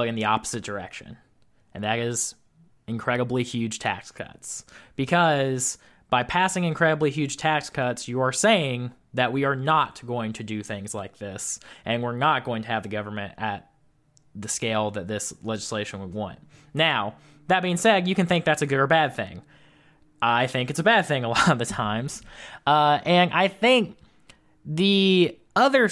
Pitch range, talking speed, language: 120-150 Hz, 180 wpm, English